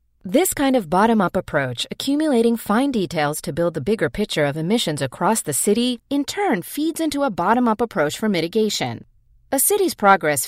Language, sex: English, female